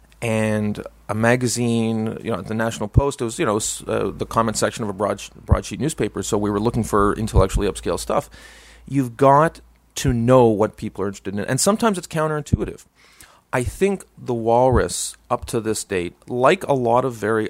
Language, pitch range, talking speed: English, 105-130 Hz, 190 wpm